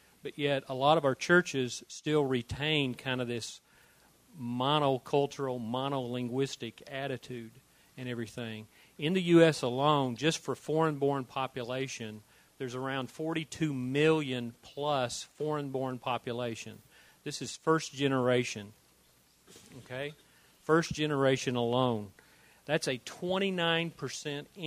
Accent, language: American, English